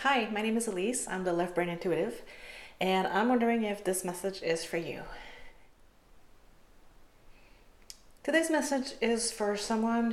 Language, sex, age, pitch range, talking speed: English, female, 30-49, 180-230 Hz, 140 wpm